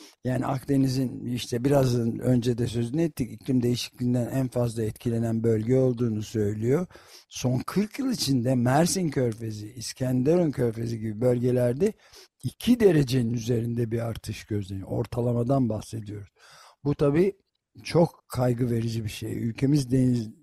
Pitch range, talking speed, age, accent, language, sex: 115-145 Hz, 125 wpm, 60-79, native, Turkish, male